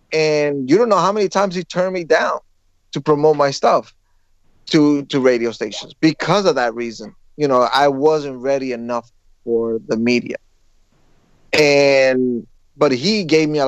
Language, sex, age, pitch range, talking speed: English, male, 30-49, 125-160 Hz, 165 wpm